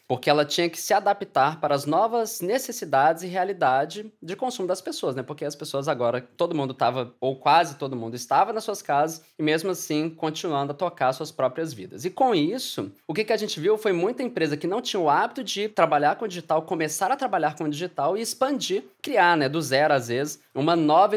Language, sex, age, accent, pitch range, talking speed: English, male, 20-39, Brazilian, 145-205 Hz, 225 wpm